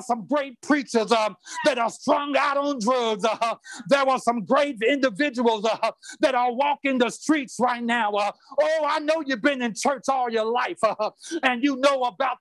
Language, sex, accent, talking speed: English, male, American, 195 wpm